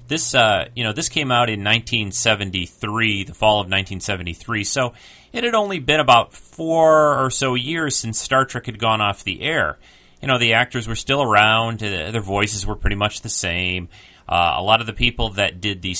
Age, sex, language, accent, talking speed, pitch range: 30-49, male, English, American, 205 wpm, 95-125 Hz